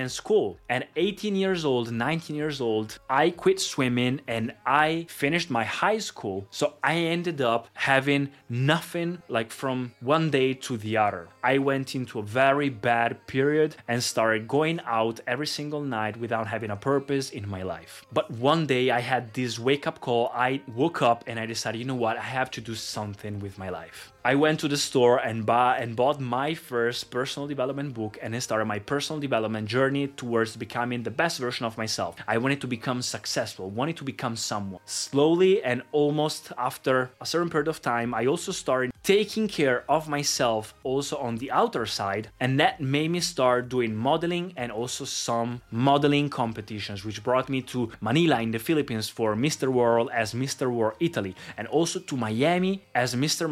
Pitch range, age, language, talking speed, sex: 115-150 Hz, 20-39, Italian, 185 wpm, male